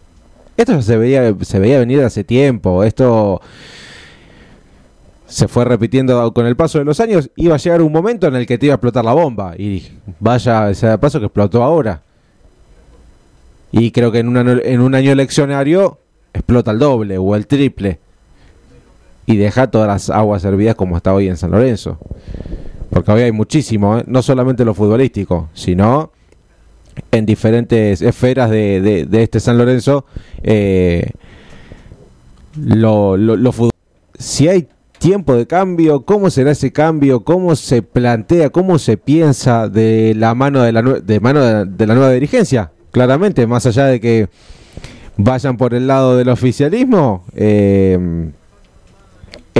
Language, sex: Spanish, male